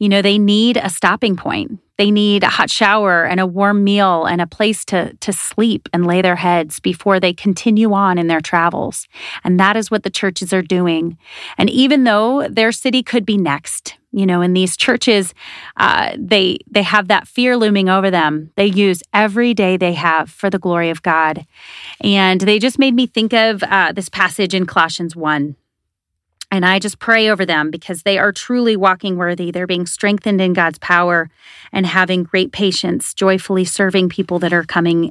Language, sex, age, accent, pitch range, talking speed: English, female, 30-49, American, 175-215 Hz, 195 wpm